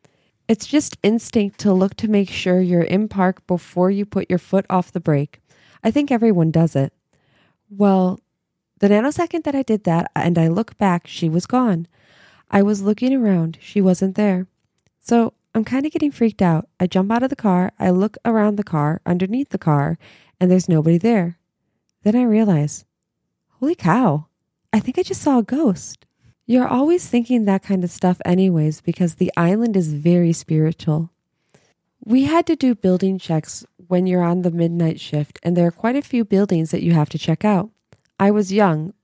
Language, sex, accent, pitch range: English, female, American, 170-225 Hz